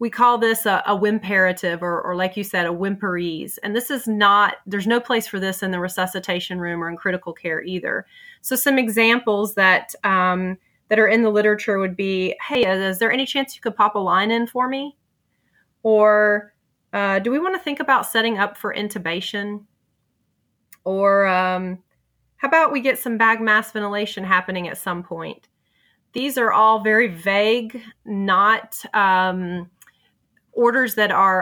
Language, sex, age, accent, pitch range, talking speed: English, female, 30-49, American, 185-225 Hz, 180 wpm